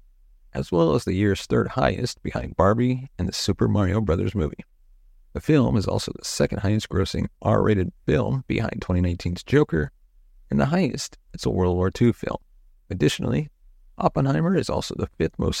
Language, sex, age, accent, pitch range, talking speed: English, male, 30-49, American, 75-120 Hz, 170 wpm